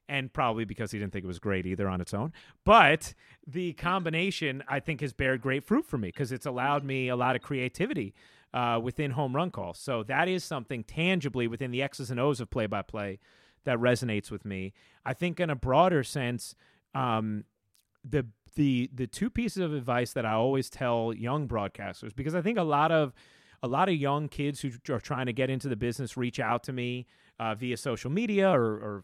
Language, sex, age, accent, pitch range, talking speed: English, male, 30-49, American, 115-145 Hz, 210 wpm